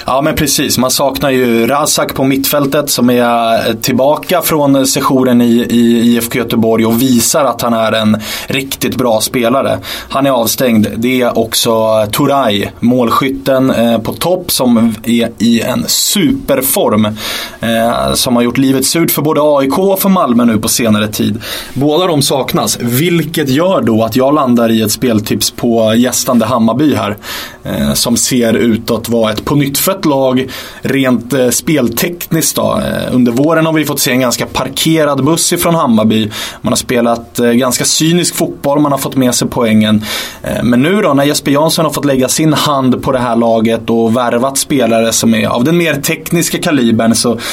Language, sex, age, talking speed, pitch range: English, male, 20-39, 170 wpm, 115-145 Hz